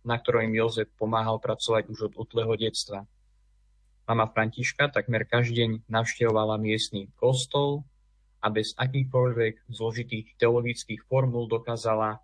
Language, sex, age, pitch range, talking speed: Slovak, male, 20-39, 110-120 Hz, 115 wpm